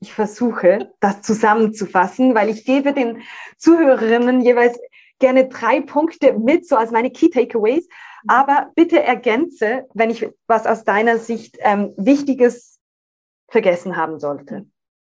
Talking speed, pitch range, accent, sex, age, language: 130 wpm, 200-245 Hz, German, female, 20-39, German